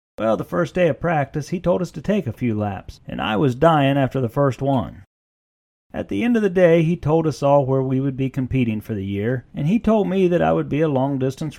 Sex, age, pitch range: male, 40-59, 130-180 Hz